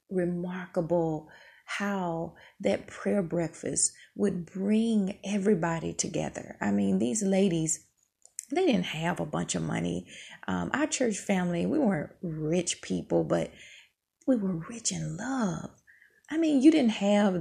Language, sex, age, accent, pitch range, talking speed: English, female, 30-49, American, 170-230 Hz, 135 wpm